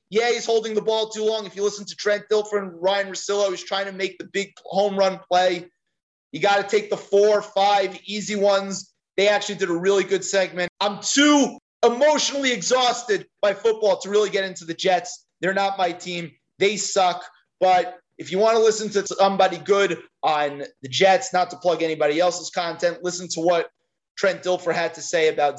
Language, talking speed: English, 205 wpm